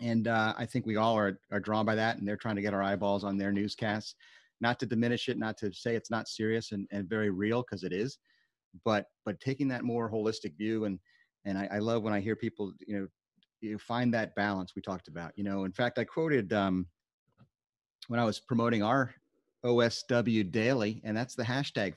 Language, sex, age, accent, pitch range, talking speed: English, male, 40-59, American, 100-115 Hz, 220 wpm